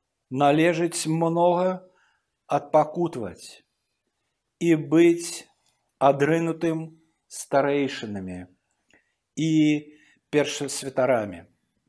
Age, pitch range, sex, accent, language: 50-69, 120-165 Hz, male, native, Russian